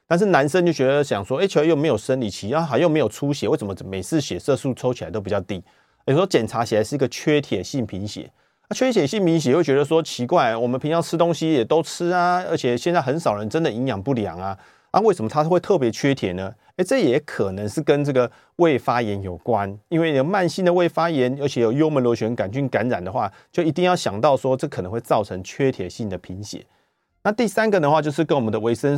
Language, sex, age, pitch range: Chinese, male, 30-49, 115-160 Hz